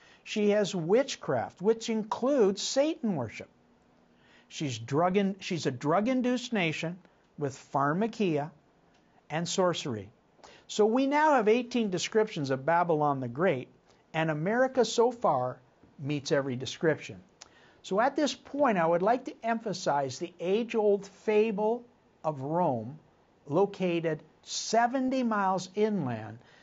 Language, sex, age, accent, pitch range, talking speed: English, male, 60-79, American, 155-230 Hz, 120 wpm